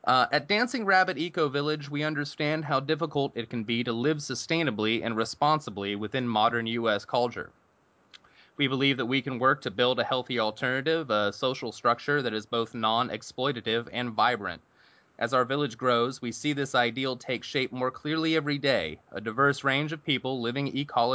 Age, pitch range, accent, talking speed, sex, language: 20-39, 115-145 Hz, American, 175 wpm, male, English